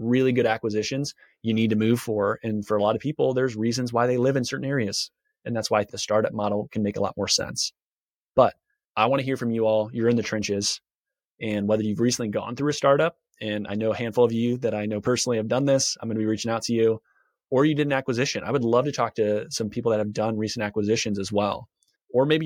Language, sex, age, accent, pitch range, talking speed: English, male, 30-49, American, 105-125 Hz, 260 wpm